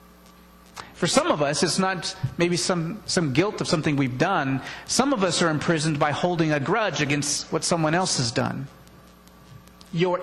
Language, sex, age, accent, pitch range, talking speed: English, male, 40-59, American, 125-170 Hz, 175 wpm